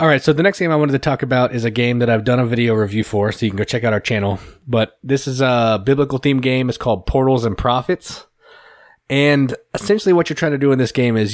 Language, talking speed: English, 270 wpm